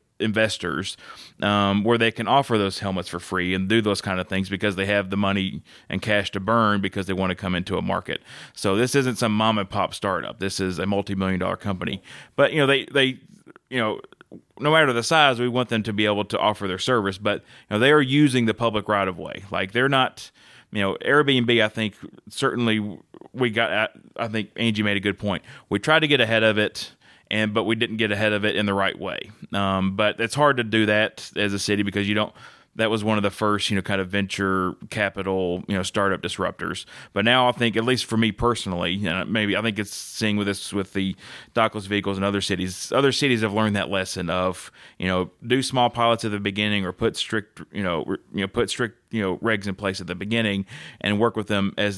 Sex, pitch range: male, 95-115 Hz